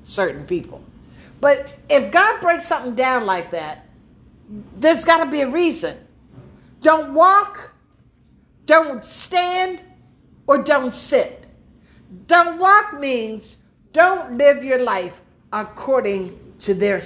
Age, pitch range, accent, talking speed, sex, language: 60-79, 215-315 Hz, American, 115 wpm, female, English